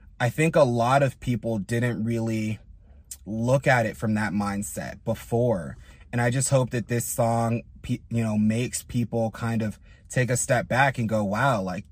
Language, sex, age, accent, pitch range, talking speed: English, male, 20-39, American, 105-125 Hz, 180 wpm